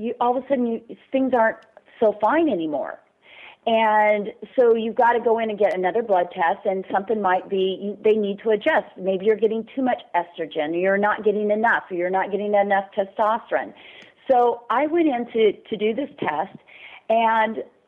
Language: English